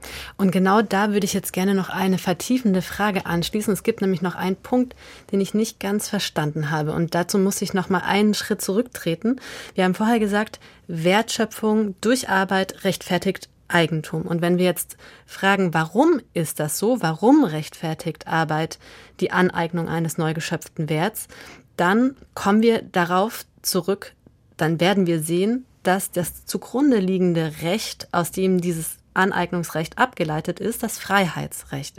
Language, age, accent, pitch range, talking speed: German, 30-49, German, 170-205 Hz, 155 wpm